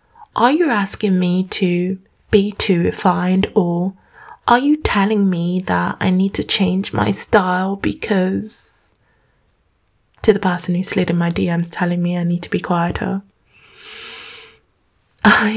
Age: 10-29